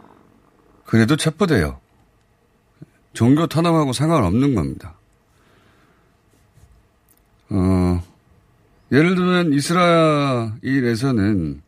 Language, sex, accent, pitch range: Korean, male, native, 95-130 Hz